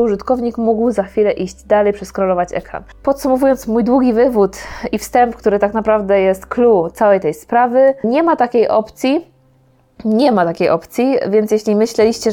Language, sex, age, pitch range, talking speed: Polish, female, 20-39, 190-220 Hz, 160 wpm